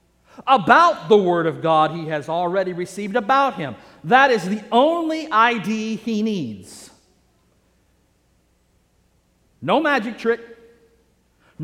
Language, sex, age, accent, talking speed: English, male, 50-69, American, 110 wpm